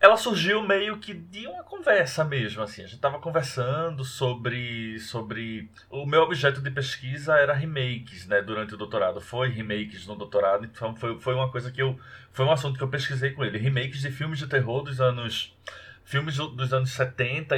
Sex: male